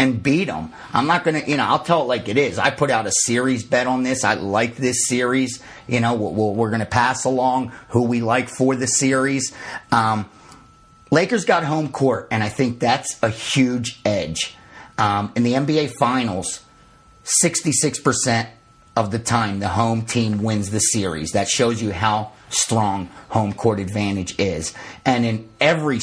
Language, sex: English, male